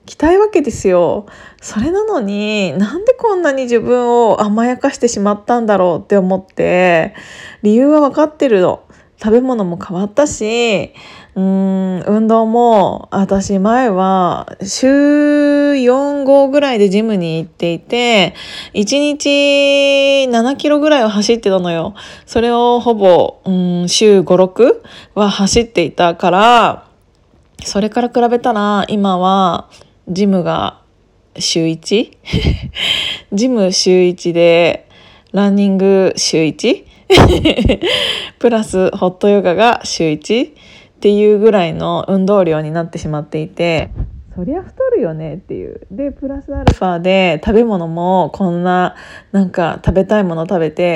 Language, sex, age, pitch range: Japanese, female, 20-39, 185-250 Hz